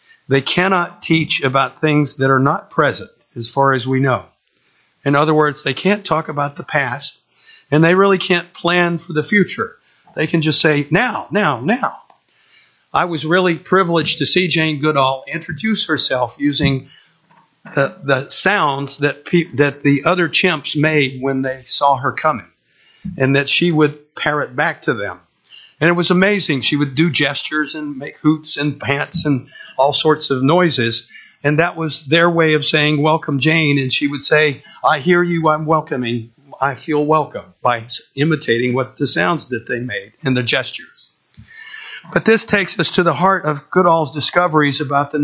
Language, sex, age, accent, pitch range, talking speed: English, male, 50-69, American, 140-170 Hz, 175 wpm